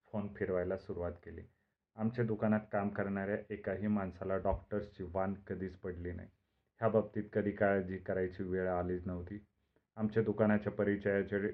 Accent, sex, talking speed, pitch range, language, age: native, male, 130 wpm, 90-105 Hz, Marathi, 30-49